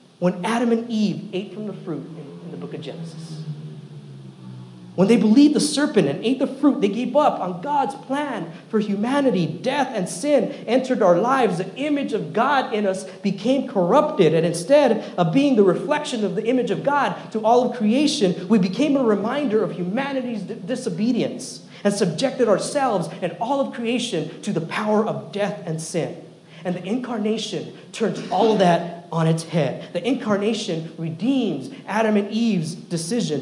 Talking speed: 175 wpm